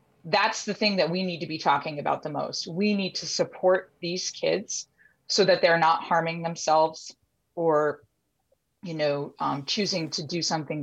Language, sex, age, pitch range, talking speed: English, female, 30-49, 160-220 Hz, 175 wpm